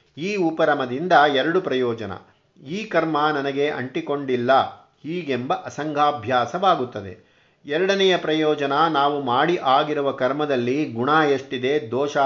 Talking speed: 95 wpm